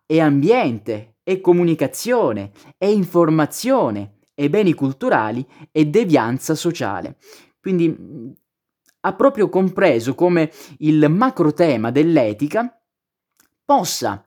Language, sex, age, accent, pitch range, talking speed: Italian, male, 20-39, native, 125-165 Hz, 95 wpm